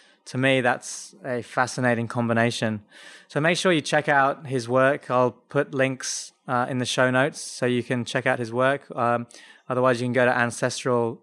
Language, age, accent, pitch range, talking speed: English, 20-39, British, 125-145 Hz, 190 wpm